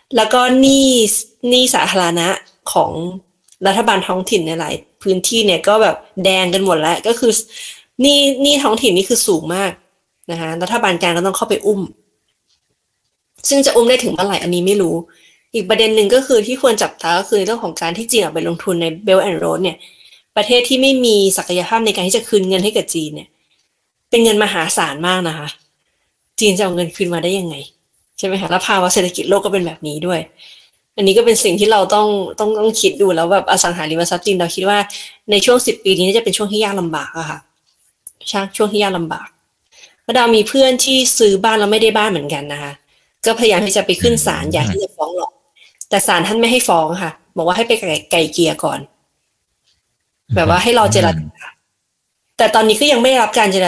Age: 20-39